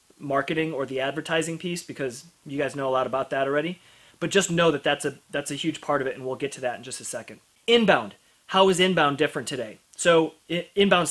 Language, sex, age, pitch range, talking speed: English, male, 30-49, 145-175 Hz, 225 wpm